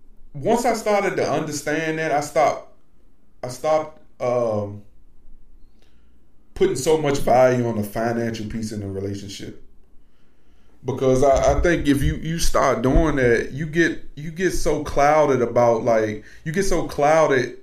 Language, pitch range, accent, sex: English, 105-135 Hz, American, male